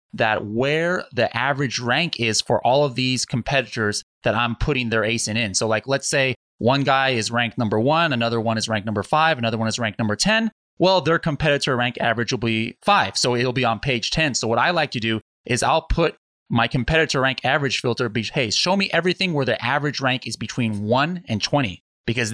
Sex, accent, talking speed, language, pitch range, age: male, American, 220 wpm, English, 115-145 Hz, 30-49